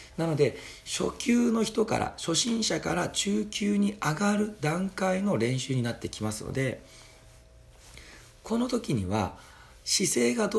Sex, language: male, Japanese